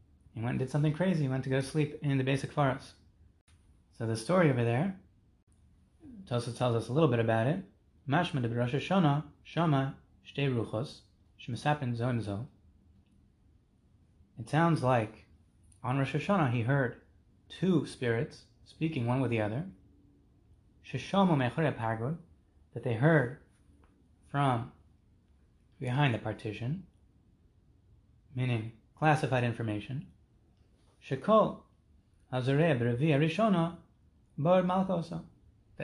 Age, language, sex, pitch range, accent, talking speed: 30-49, English, male, 95-150 Hz, American, 95 wpm